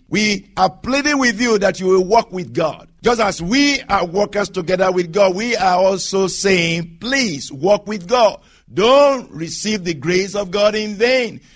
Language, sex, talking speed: English, male, 180 wpm